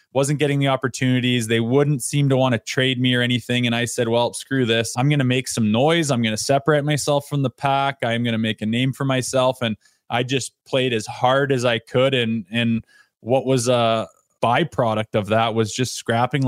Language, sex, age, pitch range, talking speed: English, male, 20-39, 115-130 Hz, 225 wpm